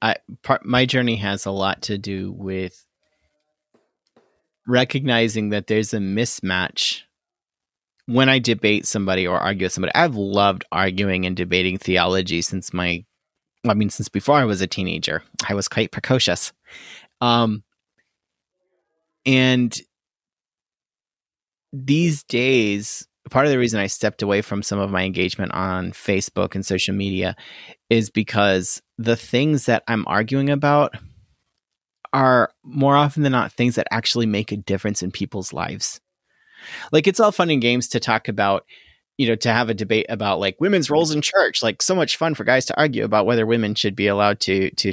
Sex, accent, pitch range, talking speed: male, American, 95-125 Hz, 165 wpm